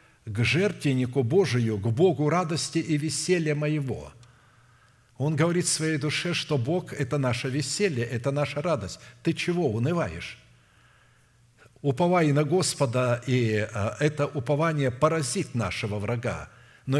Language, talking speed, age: Russian, 125 wpm, 60-79